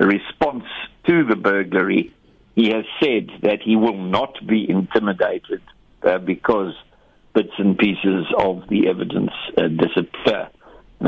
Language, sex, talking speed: English, male, 130 wpm